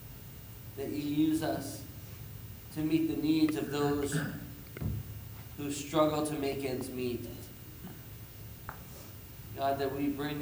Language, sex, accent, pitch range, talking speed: English, male, American, 115-140 Hz, 115 wpm